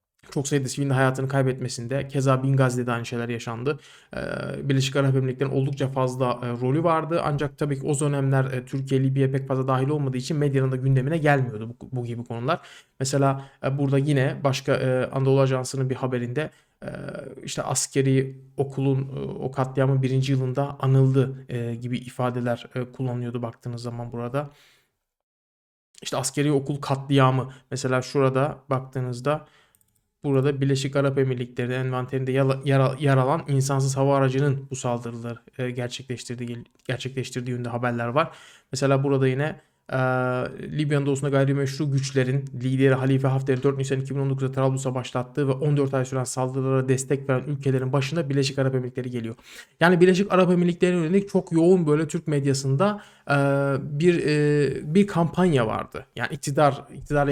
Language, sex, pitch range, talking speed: Turkish, male, 130-145 Hz, 145 wpm